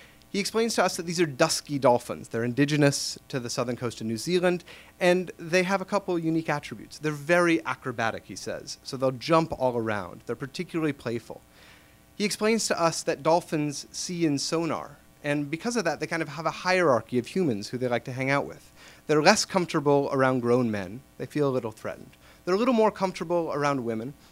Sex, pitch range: male, 120-175 Hz